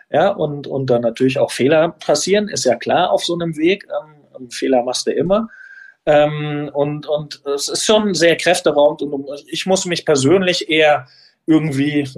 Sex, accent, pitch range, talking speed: male, German, 130-170 Hz, 170 wpm